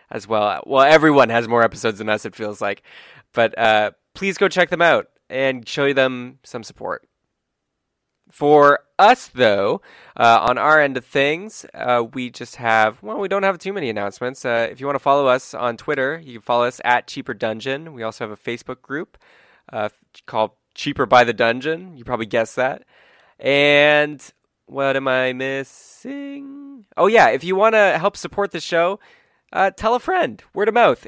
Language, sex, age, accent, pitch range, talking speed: English, male, 20-39, American, 120-170 Hz, 190 wpm